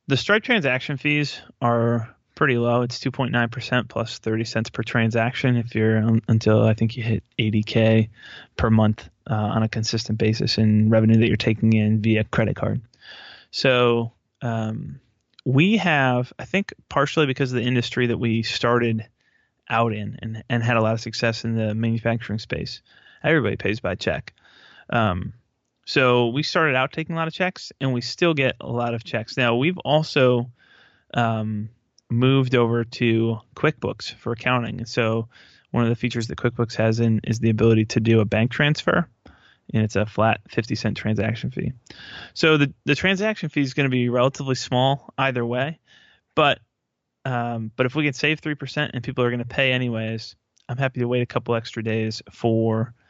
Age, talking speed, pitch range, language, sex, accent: 20-39, 185 wpm, 110-130 Hz, English, male, American